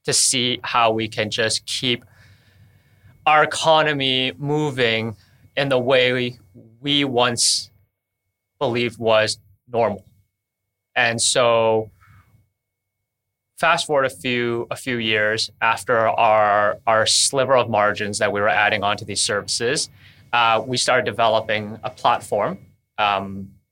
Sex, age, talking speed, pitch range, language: male, 20-39, 120 wpm, 105-130 Hz, English